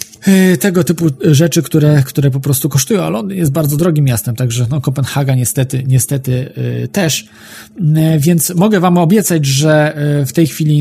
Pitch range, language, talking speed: 125-150 Hz, Polish, 155 wpm